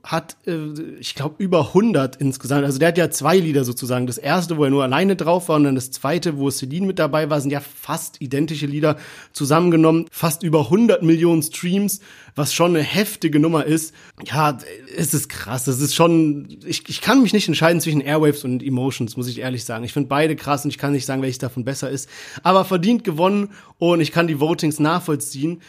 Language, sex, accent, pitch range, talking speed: German, male, German, 150-185 Hz, 210 wpm